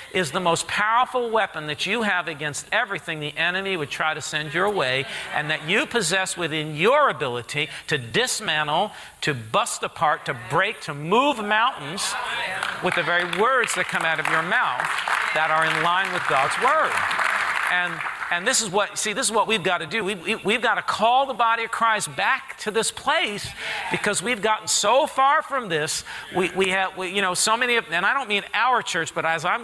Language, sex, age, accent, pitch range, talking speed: English, male, 50-69, American, 170-220 Hz, 205 wpm